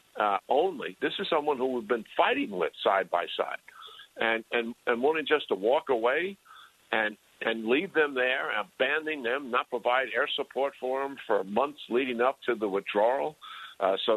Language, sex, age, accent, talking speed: English, male, 60-79, American, 180 wpm